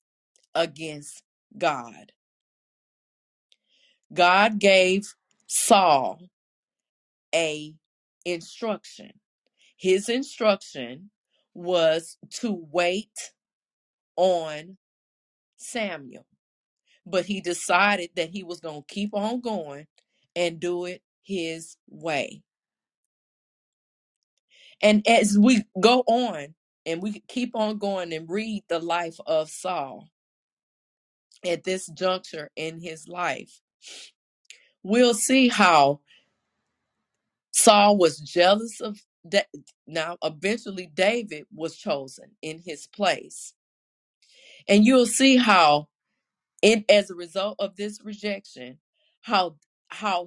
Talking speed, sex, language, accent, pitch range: 100 wpm, female, English, American, 165-210 Hz